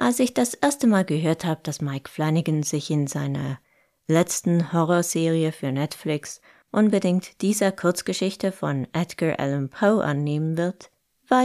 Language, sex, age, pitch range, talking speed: German, female, 20-39, 145-200 Hz, 140 wpm